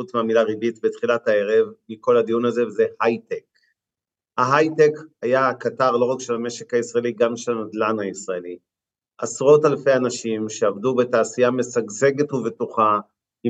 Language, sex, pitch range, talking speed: Hebrew, male, 115-145 Hz, 125 wpm